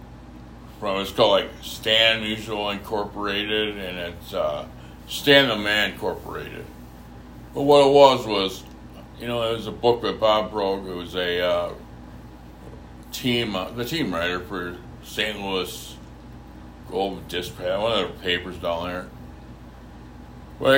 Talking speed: 140 wpm